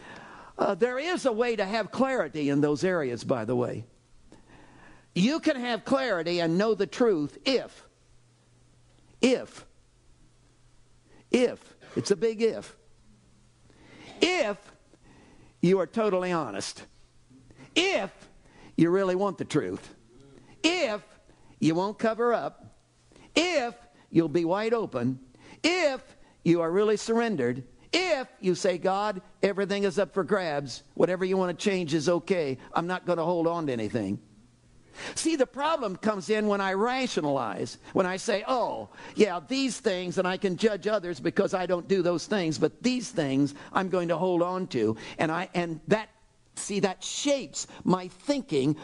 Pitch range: 165-220 Hz